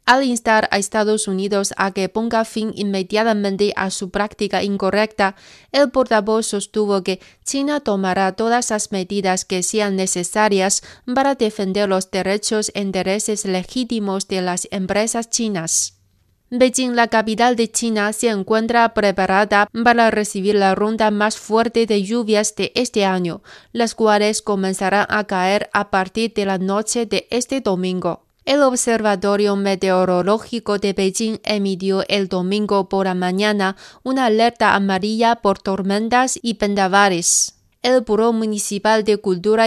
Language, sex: Spanish, female